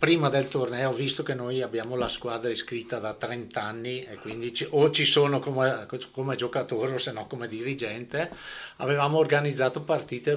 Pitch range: 115-140 Hz